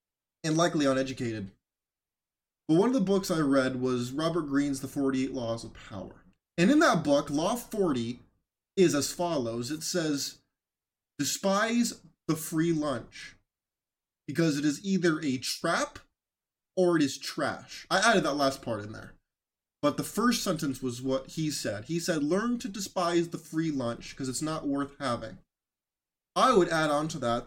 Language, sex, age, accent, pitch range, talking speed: English, male, 20-39, American, 135-185 Hz, 170 wpm